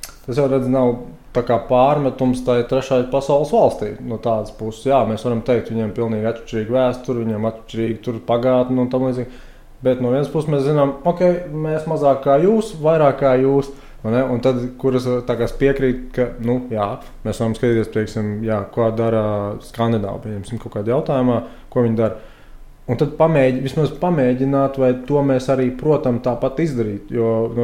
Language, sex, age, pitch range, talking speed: English, male, 20-39, 115-135 Hz, 175 wpm